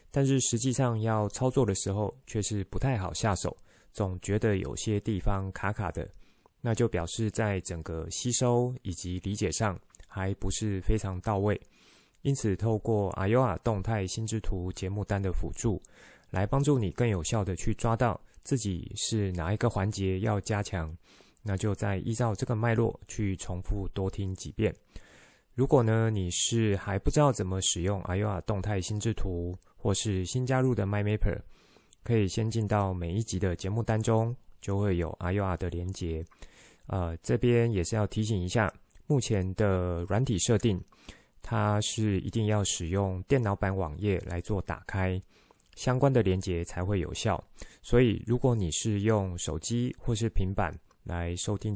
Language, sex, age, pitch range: Chinese, male, 20-39, 95-115 Hz